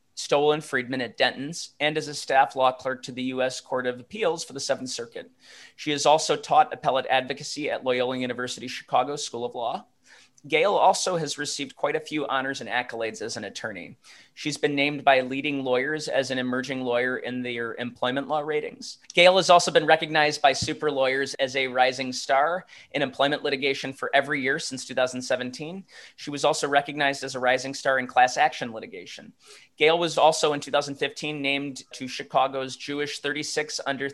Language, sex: English, male